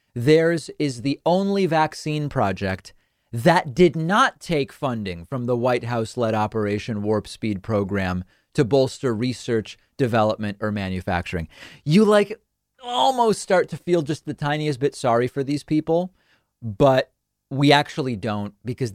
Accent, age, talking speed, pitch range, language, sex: American, 30-49, 140 wpm, 110-150 Hz, English, male